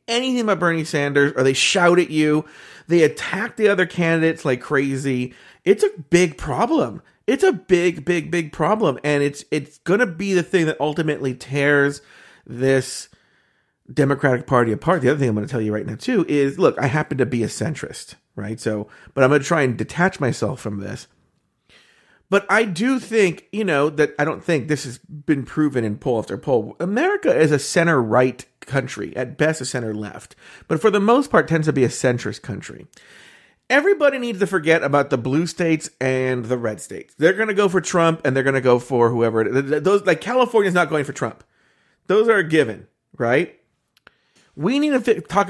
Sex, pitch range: male, 135-185 Hz